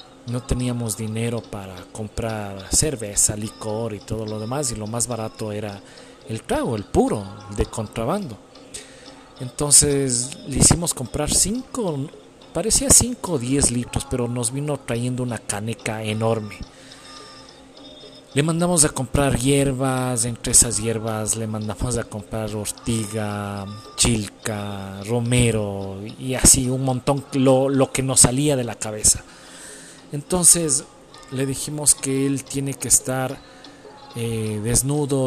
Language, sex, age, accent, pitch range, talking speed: Spanish, male, 40-59, Mexican, 110-135 Hz, 130 wpm